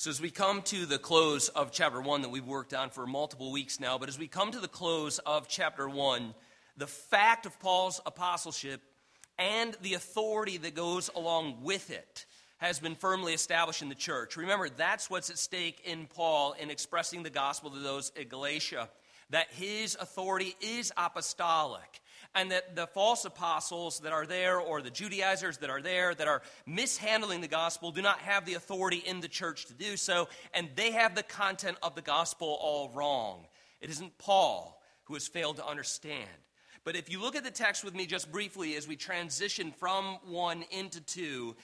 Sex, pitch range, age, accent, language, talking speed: male, 150-190 Hz, 40-59, American, English, 195 wpm